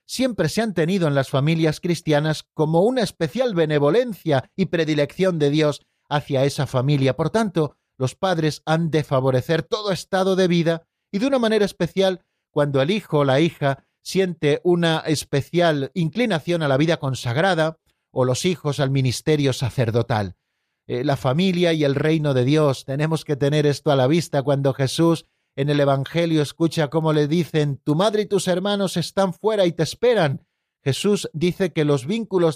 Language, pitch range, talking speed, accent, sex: Spanish, 145-185 Hz, 175 wpm, Spanish, male